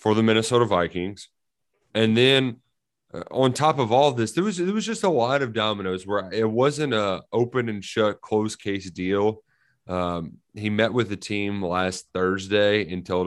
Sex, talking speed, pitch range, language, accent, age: male, 185 wpm, 90-120 Hz, English, American, 30-49